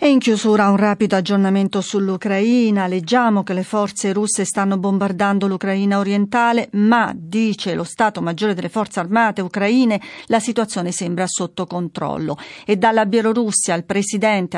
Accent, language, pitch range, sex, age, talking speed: native, Italian, 185-215 Hz, female, 40-59, 145 wpm